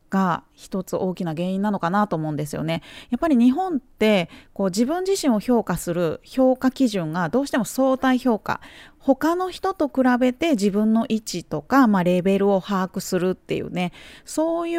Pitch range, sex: 180-255 Hz, female